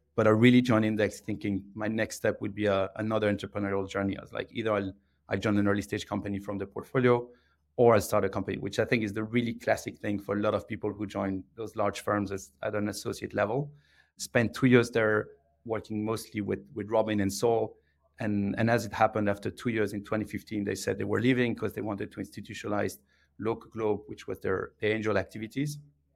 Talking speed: 220 wpm